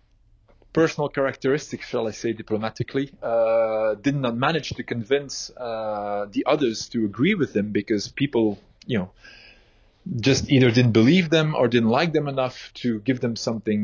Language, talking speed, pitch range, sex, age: English, 160 wpm, 105-125 Hz, male, 30-49